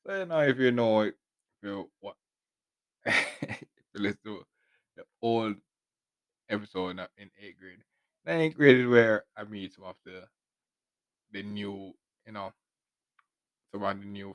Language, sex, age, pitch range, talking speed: English, male, 20-39, 100-120 Hz, 150 wpm